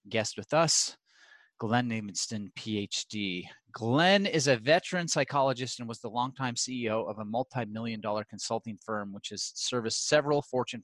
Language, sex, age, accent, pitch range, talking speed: English, male, 30-49, American, 115-150 Hz, 145 wpm